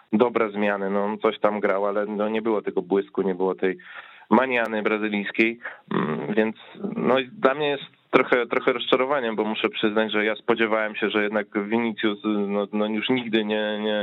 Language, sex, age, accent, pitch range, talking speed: Polish, male, 20-39, native, 105-115 Hz, 185 wpm